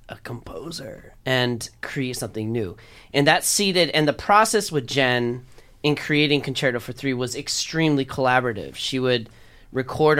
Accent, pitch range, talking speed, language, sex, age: American, 115-145 Hz, 145 wpm, English, male, 30-49